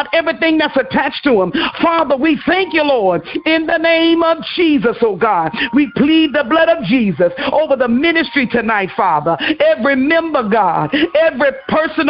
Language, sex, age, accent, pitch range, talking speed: English, male, 50-69, American, 255-325 Hz, 165 wpm